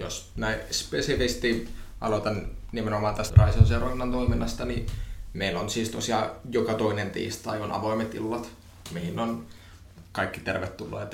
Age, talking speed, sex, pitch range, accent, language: 20-39, 130 wpm, male, 95-110 Hz, native, Finnish